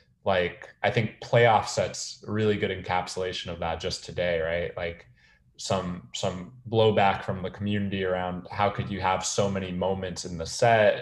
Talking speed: 170 wpm